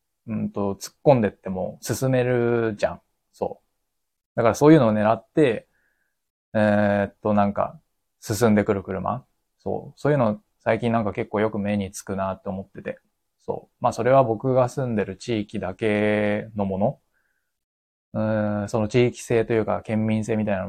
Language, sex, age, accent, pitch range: Japanese, male, 20-39, native, 95-115 Hz